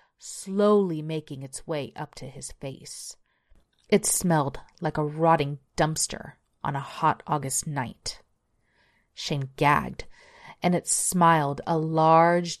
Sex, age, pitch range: female, 30-49, 155-195 Hz